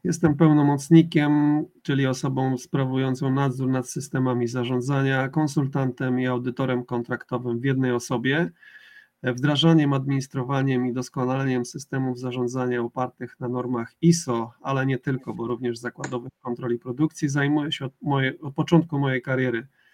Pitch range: 125-150 Hz